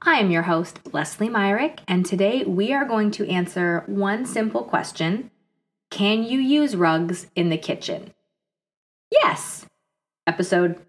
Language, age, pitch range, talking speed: English, 20-39, 170-210 Hz, 140 wpm